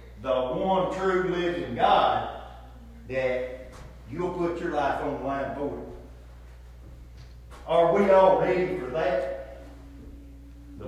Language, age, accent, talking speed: English, 50-69, American, 120 wpm